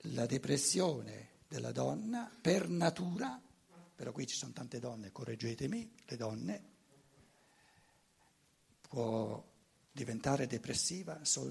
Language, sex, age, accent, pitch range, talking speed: Italian, male, 60-79, native, 140-220 Hz, 95 wpm